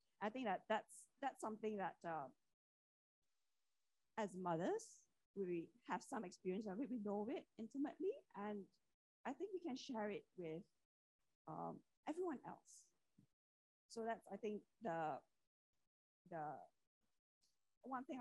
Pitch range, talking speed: 185-250 Hz, 130 wpm